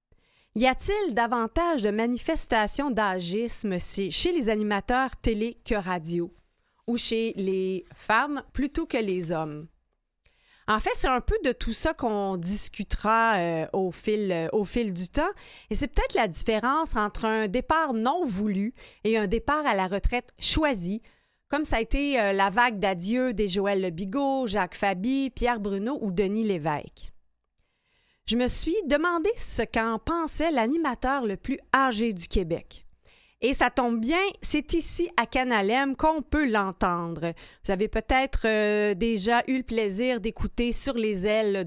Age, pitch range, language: 30-49, 200-260 Hz, French